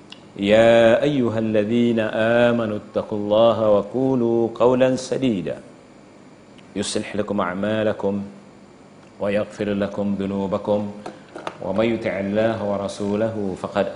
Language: Malay